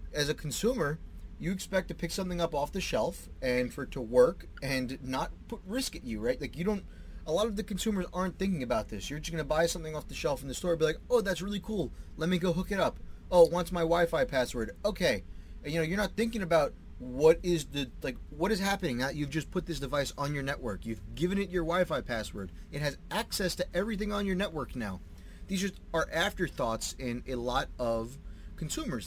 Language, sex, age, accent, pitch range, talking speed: English, male, 30-49, American, 130-190 Hz, 240 wpm